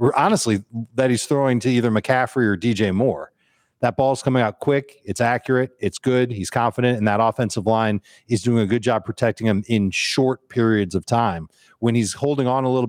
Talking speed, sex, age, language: 200 wpm, male, 40-59, English